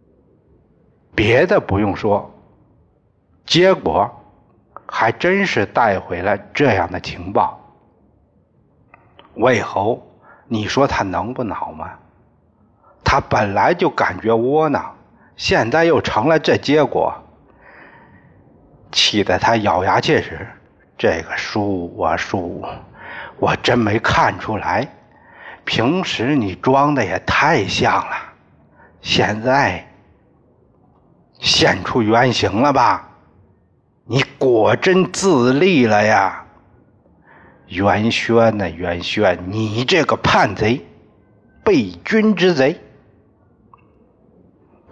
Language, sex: Chinese, male